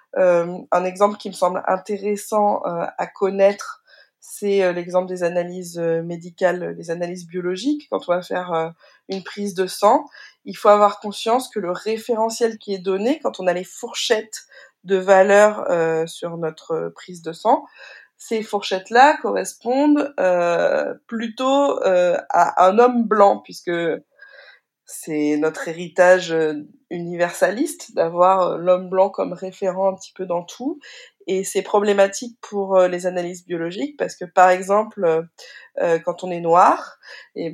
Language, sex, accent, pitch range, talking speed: French, female, French, 180-215 Hz, 145 wpm